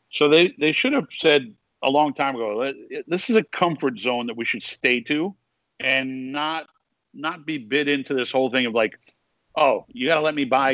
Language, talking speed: English, 210 wpm